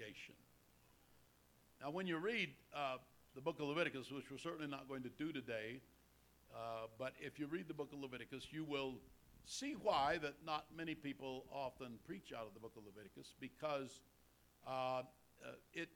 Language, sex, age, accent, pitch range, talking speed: English, male, 60-79, American, 125-150 Hz, 175 wpm